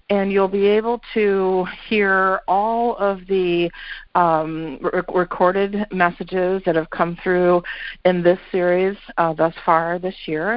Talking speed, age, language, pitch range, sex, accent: 140 wpm, 40-59, English, 155-185 Hz, female, American